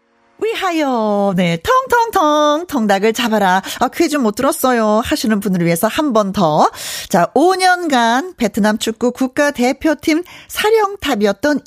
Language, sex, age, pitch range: Korean, female, 40-59, 195-300 Hz